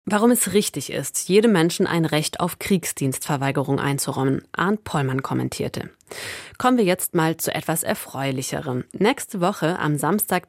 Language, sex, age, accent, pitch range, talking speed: German, female, 30-49, German, 155-205 Hz, 145 wpm